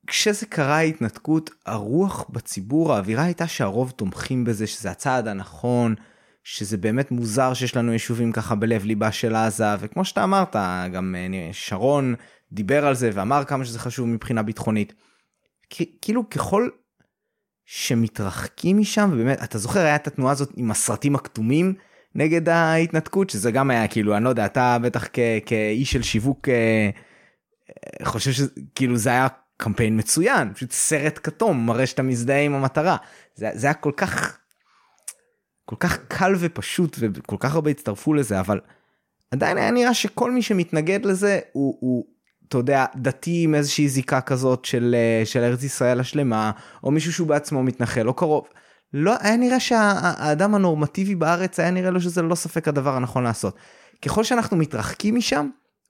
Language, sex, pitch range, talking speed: Hebrew, male, 115-170 Hz, 155 wpm